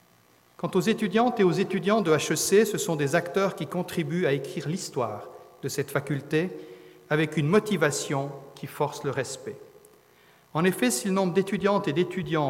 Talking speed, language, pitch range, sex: 170 wpm, French, 140-185 Hz, male